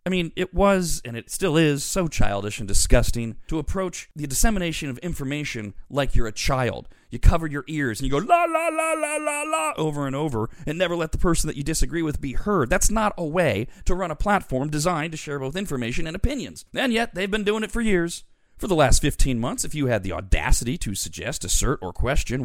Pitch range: 120-195 Hz